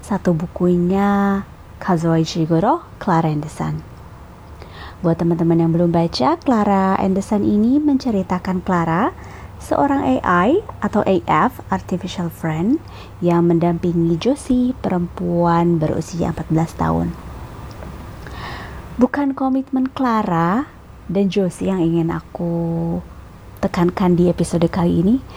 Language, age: Indonesian, 20-39